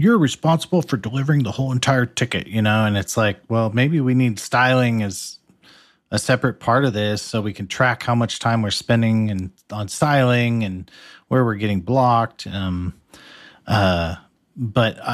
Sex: male